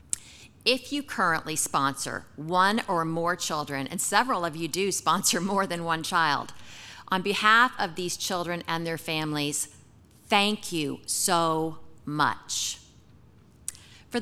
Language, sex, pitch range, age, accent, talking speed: English, female, 160-220 Hz, 50-69, American, 130 wpm